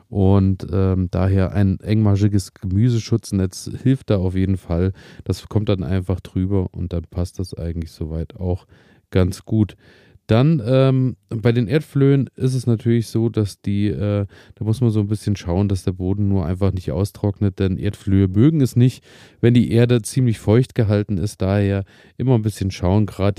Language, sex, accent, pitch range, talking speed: German, male, German, 95-110 Hz, 175 wpm